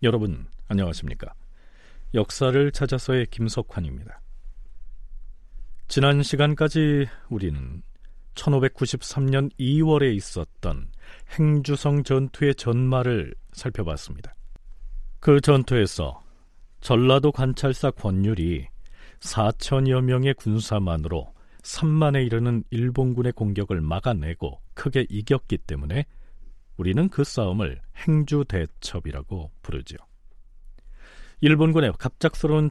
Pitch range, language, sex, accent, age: 90-140 Hz, Korean, male, native, 40-59